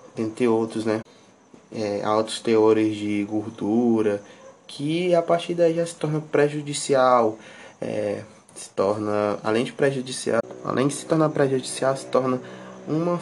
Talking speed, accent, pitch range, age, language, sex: 140 wpm, Brazilian, 105-140 Hz, 20-39, Portuguese, male